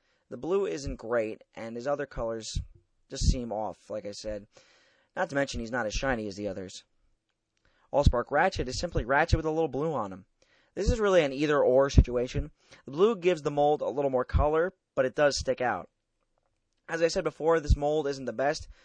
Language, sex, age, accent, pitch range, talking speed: English, male, 30-49, American, 115-165 Hz, 205 wpm